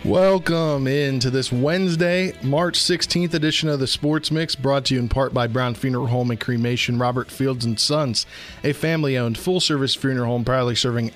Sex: male